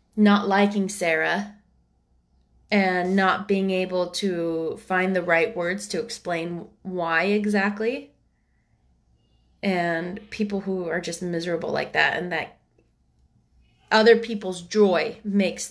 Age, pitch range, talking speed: 20-39, 165-205 Hz, 115 wpm